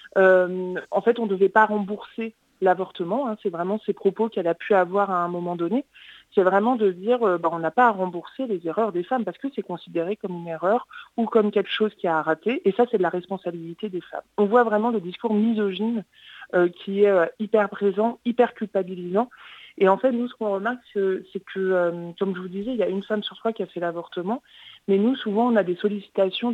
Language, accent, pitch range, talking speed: French, French, 180-220 Hz, 235 wpm